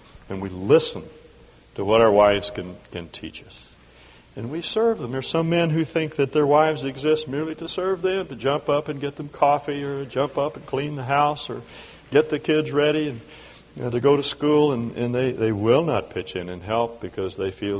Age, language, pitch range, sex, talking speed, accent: 60-79, English, 95-140 Hz, male, 220 wpm, American